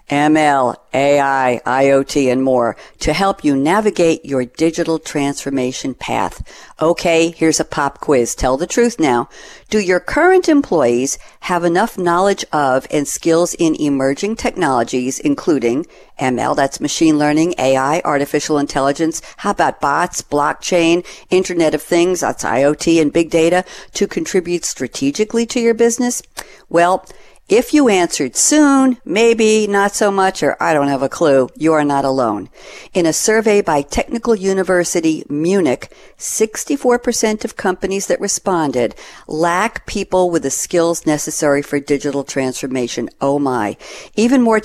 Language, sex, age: English, female, 60-79